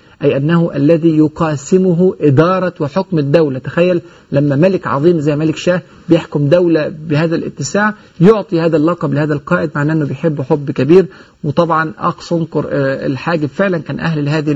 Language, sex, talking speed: Arabic, male, 145 wpm